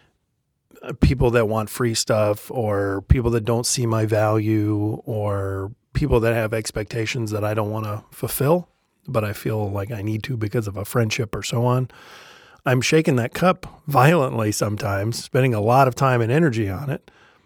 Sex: male